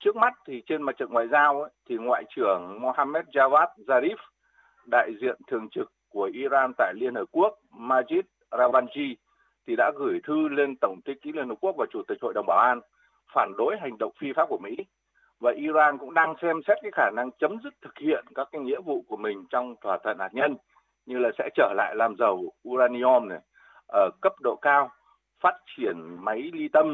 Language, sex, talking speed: Vietnamese, male, 210 wpm